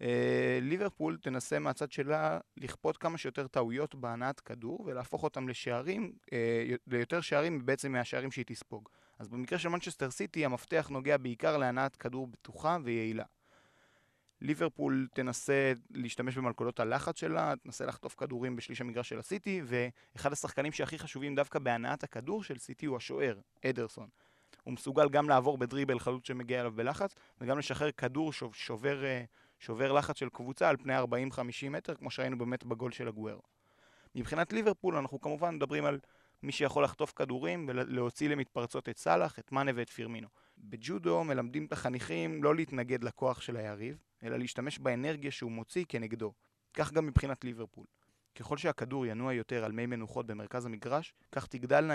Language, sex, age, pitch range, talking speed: Hebrew, male, 30-49, 120-145 Hz, 155 wpm